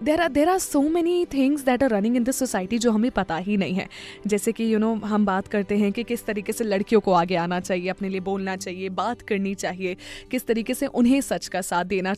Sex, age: female, 20-39